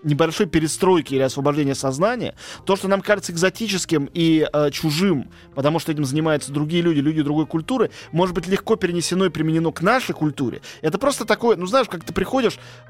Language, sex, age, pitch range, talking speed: Russian, male, 30-49, 145-195 Hz, 180 wpm